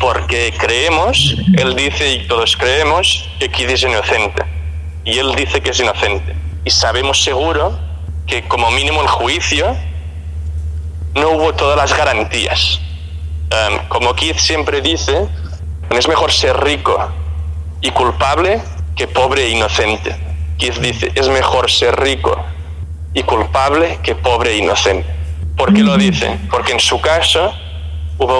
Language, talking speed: Portuguese, 140 wpm